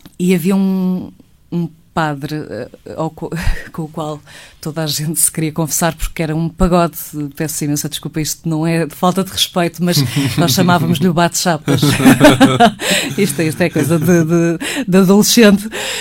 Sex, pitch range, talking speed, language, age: female, 155-200 Hz, 160 wpm, Portuguese, 20-39